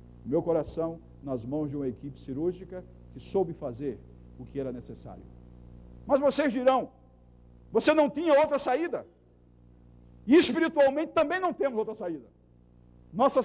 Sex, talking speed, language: male, 140 wpm, Portuguese